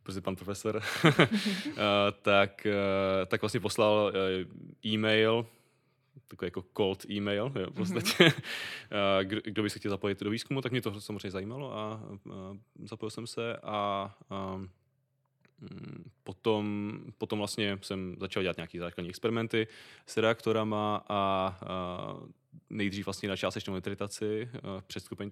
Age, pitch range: 20-39, 95-110 Hz